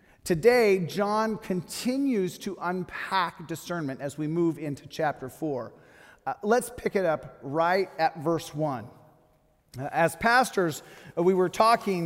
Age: 40-59